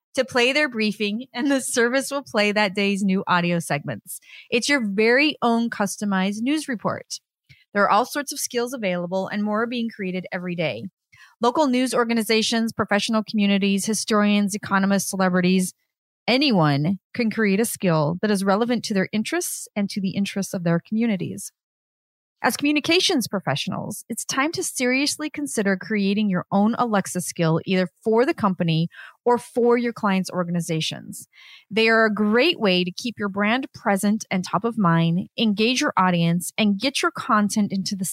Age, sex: 30-49, female